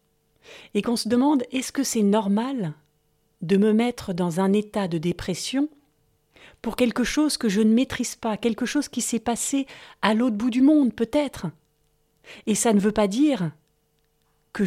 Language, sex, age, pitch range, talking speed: French, female, 40-59, 185-245 Hz, 170 wpm